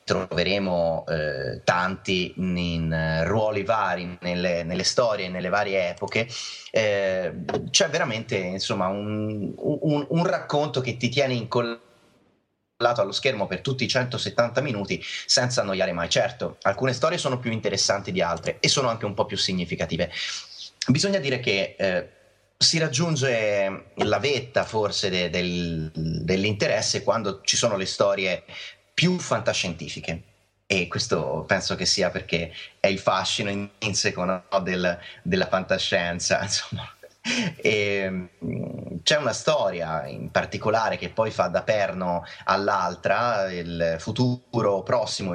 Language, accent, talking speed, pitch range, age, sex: Italian, native, 135 wpm, 90-125 Hz, 30-49, male